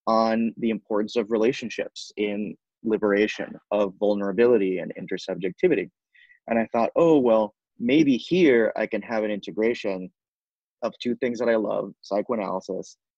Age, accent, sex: 30-49, American, male